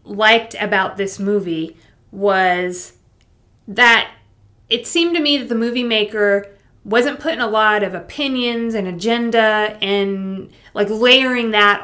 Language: English